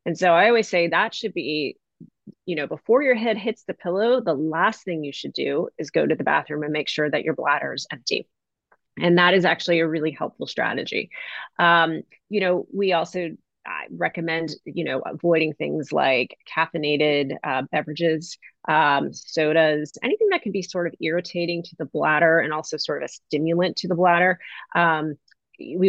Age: 30-49